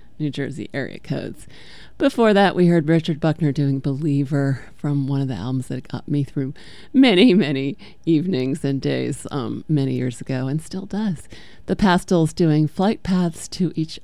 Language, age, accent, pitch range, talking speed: English, 40-59, American, 135-175 Hz, 170 wpm